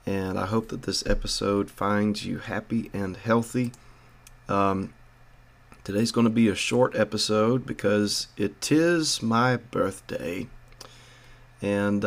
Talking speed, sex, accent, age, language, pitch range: 125 wpm, male, American, 30-49, English, 100-120 Hz